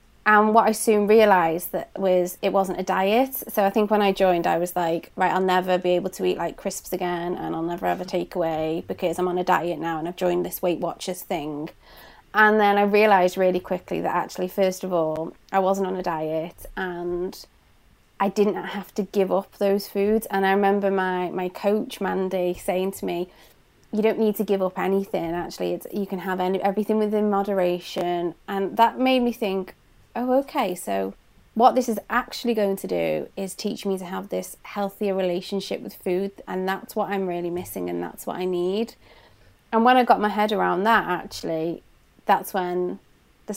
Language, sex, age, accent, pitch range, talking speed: English, female, 20-39, British, 180-210 Hz, 205 wpm